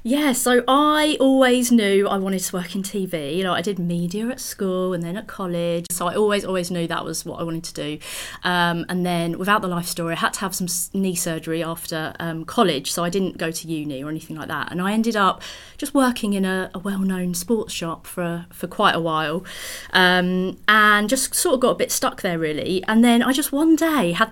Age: 30-49